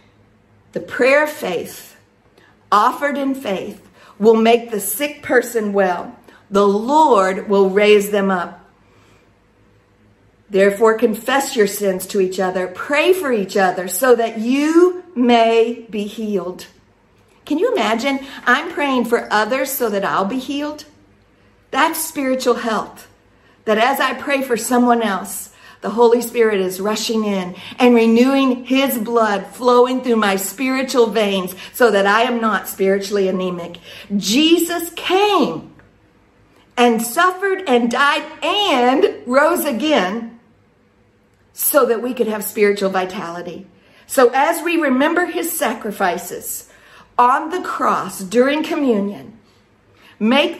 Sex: female